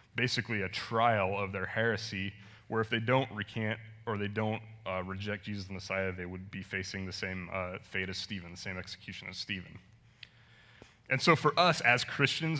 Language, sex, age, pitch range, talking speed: English, male, 20-39, 100-120 Hz, 190 wpm